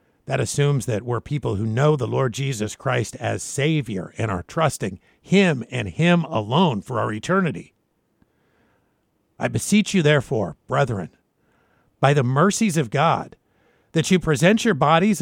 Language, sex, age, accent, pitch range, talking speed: English, male, 50-69, American, 150-215 Hz, 150 wpm